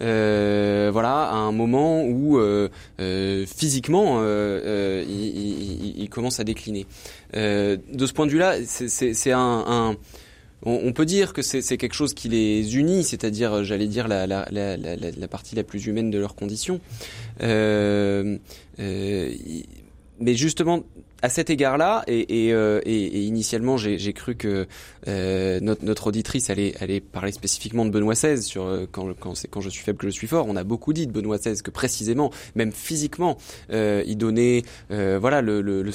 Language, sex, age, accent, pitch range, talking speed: French, male, 20-39, French, 100-120 Hz, 190 wpm